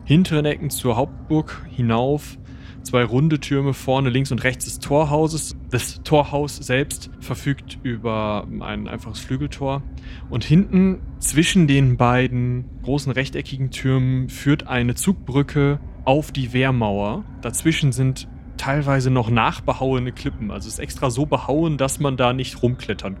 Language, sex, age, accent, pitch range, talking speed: German, male, 30-49, German, 110-135 Hz, 135 wpm